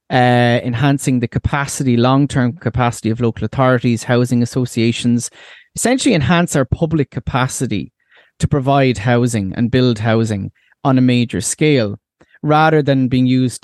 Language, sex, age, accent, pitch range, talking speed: English, male, 30-49, Irish, 120-145 Hz, 130 wpm